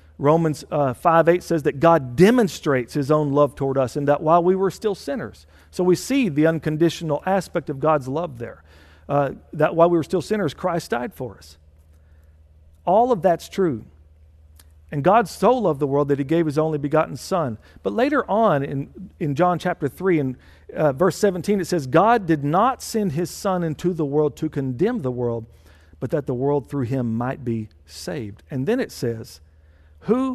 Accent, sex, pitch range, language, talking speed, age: American, male, 115-180 Hz, English, 195 wpm, 50-69